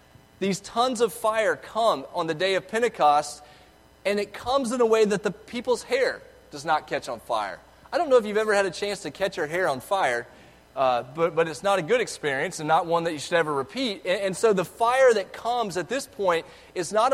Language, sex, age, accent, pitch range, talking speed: English, male, 30-49, American, 165-225 Hz, 240 wpm